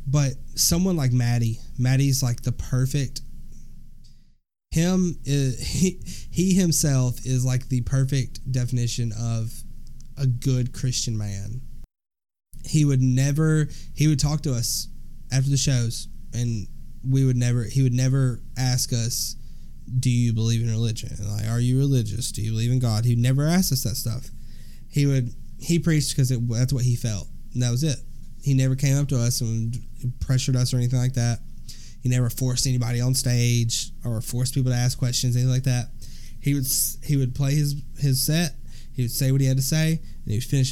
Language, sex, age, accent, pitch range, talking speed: English, male, 20-39, American, 120-140 Hz, 185 wpm